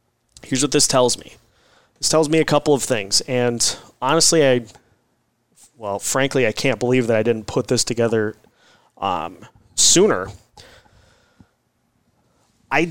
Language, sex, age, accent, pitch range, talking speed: English, male, 30-49, American, 115-135 Hz, 135 wpm